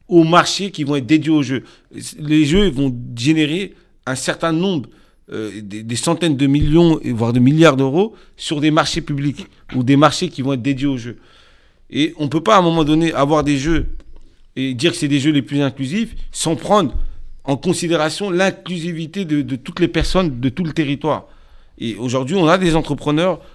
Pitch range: 130-165 Hz